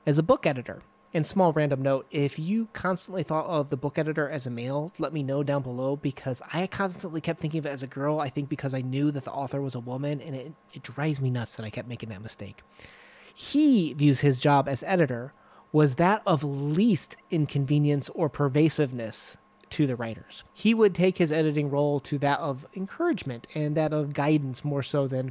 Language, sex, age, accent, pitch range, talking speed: English, male, 20-39, American, 130-165 Hz, 215 wpm